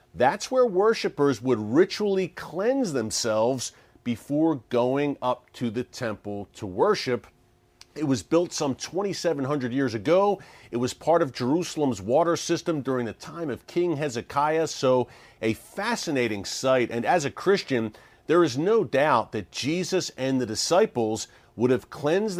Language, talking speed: English, 145 wpm